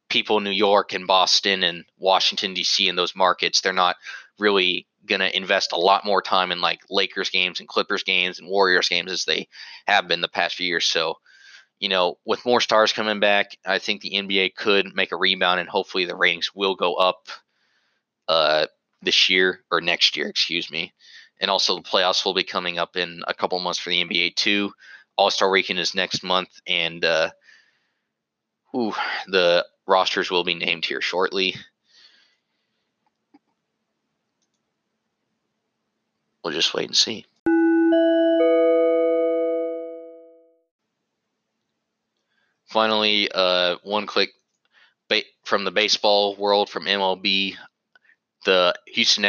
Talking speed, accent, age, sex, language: 145 wpm, American, 20-39, male, English